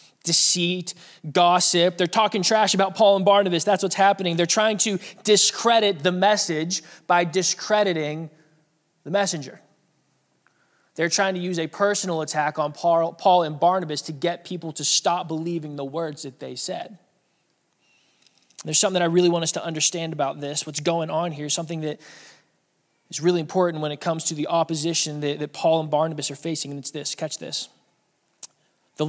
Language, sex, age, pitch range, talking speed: English, male, 20-39, 160-210 Hz, 170 wpm